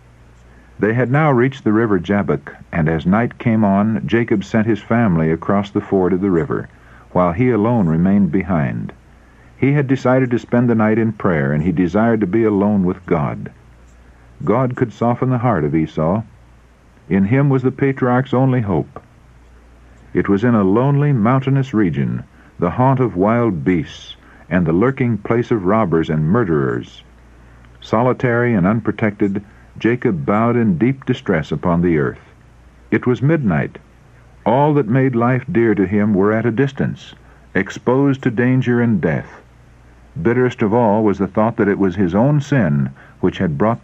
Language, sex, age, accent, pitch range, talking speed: English, male, 60-79, American, 80-120 Hz, 170 wpm